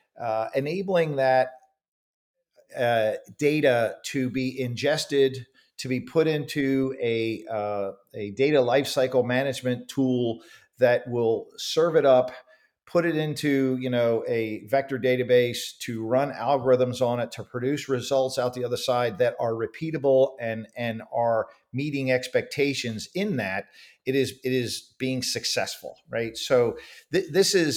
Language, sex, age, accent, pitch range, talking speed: English, male, 40-59, American, 120-145 Hz, 140 wpm